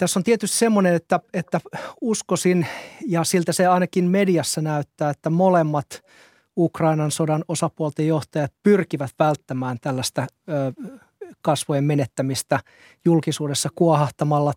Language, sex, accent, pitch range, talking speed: Finnish, male, native, 145-180 Hz, 110 wpm